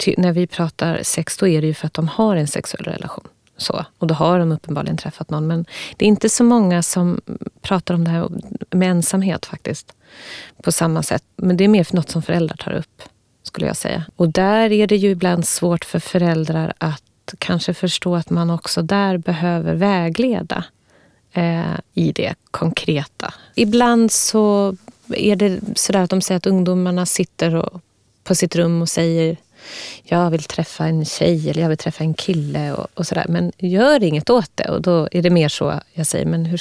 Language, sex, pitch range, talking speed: Swedish, female, 165-190 Hz, 195 wpm